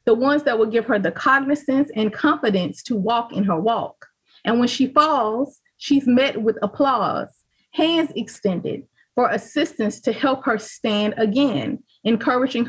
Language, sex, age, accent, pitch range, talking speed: English, female, 30-49, American, 205-265 Hz, 155 wpm